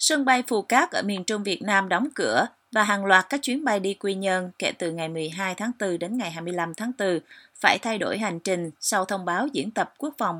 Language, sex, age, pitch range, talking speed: Vietnamese, female, 20-39, 175-235 Hz, 250 wpm